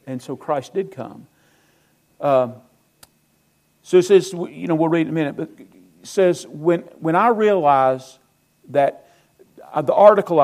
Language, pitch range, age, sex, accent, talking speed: English, 130-185 Hz, 50-69, male, American, 150 wpm